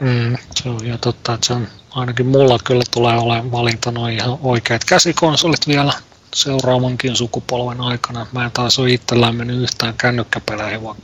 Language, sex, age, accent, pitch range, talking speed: Finnish, male, 30-49, native, 115-125 Hz, 150 wpm